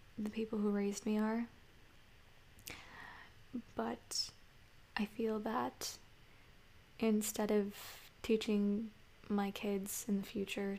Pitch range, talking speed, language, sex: 205-220 Hz, 100 wpm, English, female